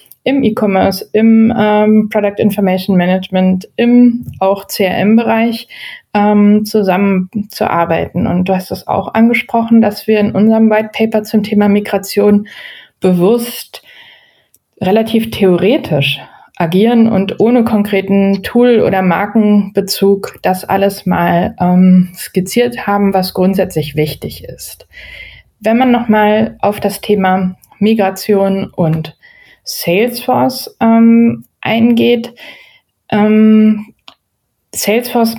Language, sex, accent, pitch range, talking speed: German, female, German, 185-220 Hz, 100 wpm